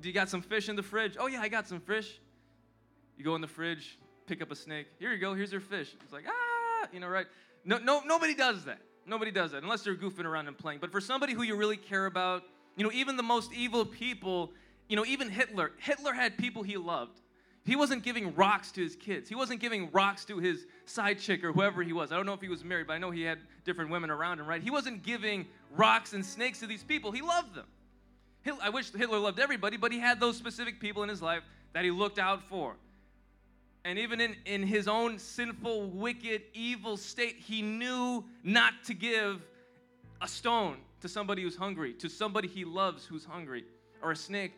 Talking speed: 230 wpm